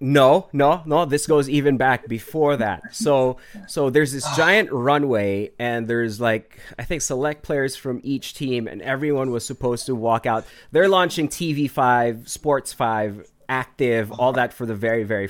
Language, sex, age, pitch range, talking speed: English, male, 30-49, 115-150 Hz, 170 wpm